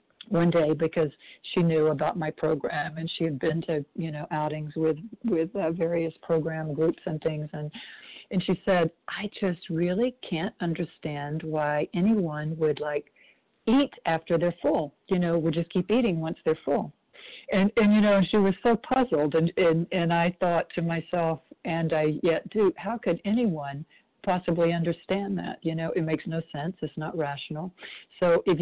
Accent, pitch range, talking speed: American, 160-190 Hz, 180 wpm